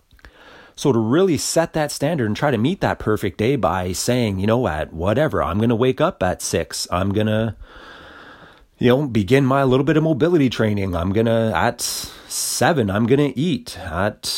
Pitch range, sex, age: 105-135 Hz, male, 30-49